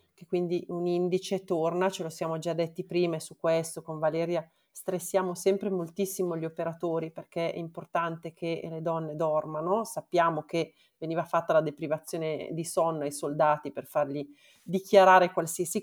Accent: native